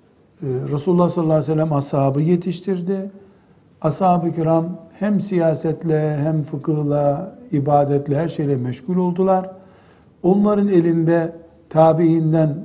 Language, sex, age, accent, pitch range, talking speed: Turkish, male, 60-79, native, 140-190 Hz, 100 wpm